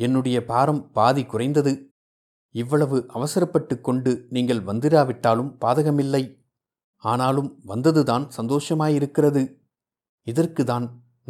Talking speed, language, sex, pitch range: 75 wpm, Tamil, male, 115-145 Hz